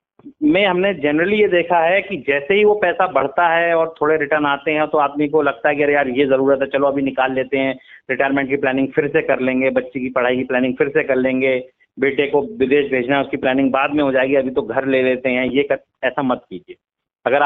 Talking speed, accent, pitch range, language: 250 wpm, native, 135-185 Hz, Hindi